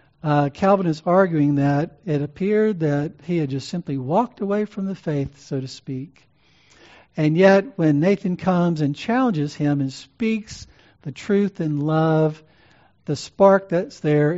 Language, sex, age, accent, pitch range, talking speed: English, male, 60-79, American, 140-180 Hz, 160 wpm